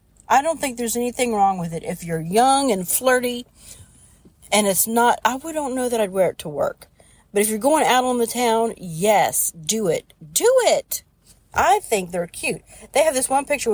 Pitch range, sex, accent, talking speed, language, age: 190-245 Hz, female, American, 210 wpm, English, 40-59